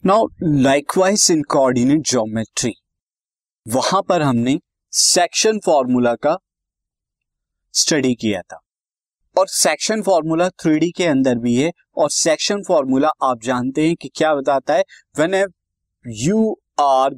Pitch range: 130-195 Hz